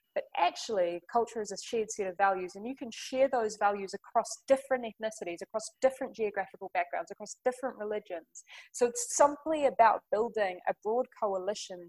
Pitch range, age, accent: 190-235 Hz, 20-39, Australian